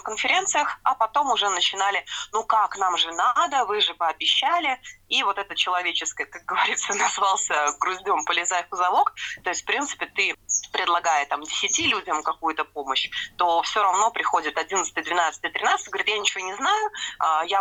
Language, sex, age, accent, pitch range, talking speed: Russian, female, 20-39, native, 170-210 Hz, 160 wpm